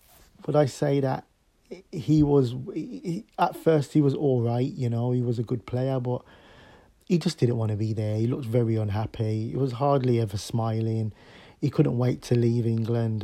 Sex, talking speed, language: male, 190 wpm, English